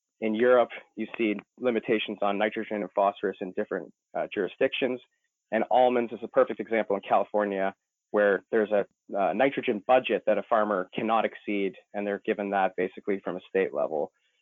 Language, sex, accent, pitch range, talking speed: English, male, American, 105-125 Hz, 170 wpm